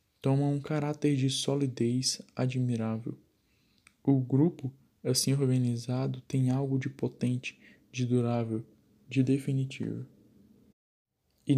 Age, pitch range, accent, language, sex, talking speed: 10-29, 115-140 Hz, Brazilian, Portuguese, male, 100 wpm